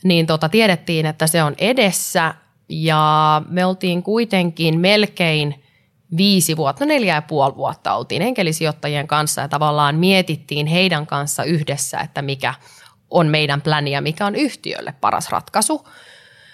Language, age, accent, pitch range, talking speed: Finnish, 20-39, native, 145-185 Hz, 140 wpm